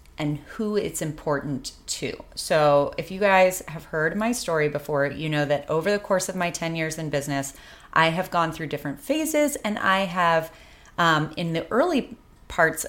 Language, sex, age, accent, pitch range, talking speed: English, female, 30-49, American, 140-180 Hz, 185 wpm